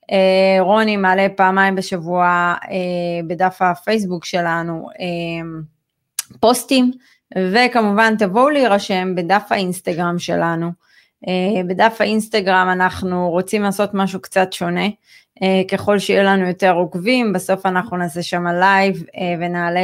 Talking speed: 120 wpm